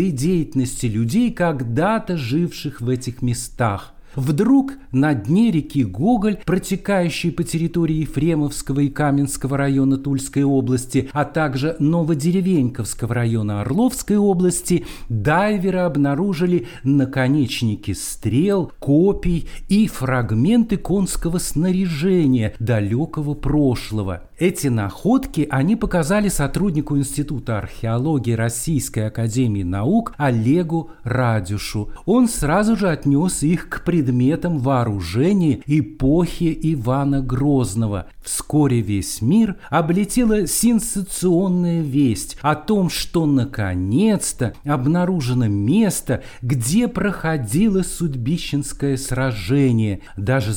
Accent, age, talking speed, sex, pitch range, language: native, 50-69, 95 wpm, male, 125-175 Hz, Russian